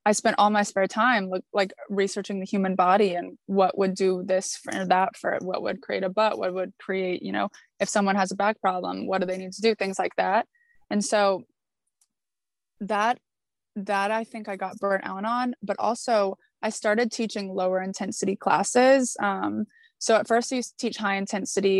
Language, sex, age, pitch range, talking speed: English, female, 20-39, 195-225 Hz, 200 wpm